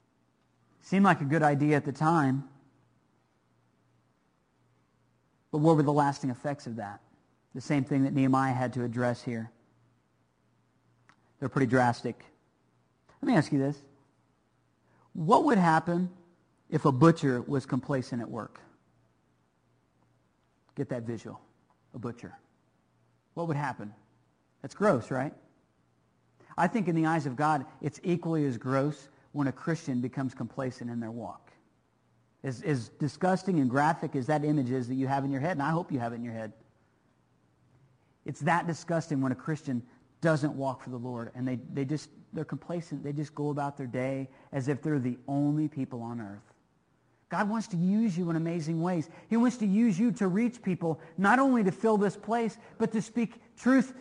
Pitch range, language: 130-205 Hz, English